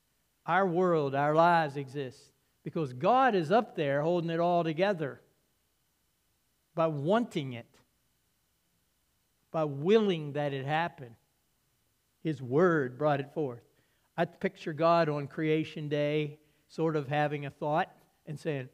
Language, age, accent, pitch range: English, 60-79, American, 145-175 Hz